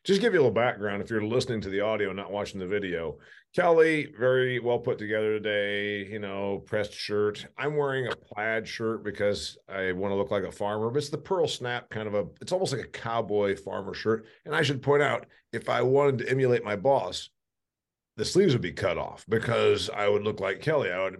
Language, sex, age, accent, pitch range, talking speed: English, male, 50-69, American, 105-155 Hz, 230 wpm